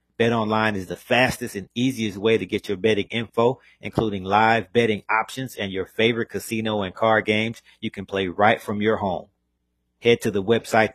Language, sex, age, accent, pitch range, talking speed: English, male, 40-59, American, 100-115 Hz, 190 wpm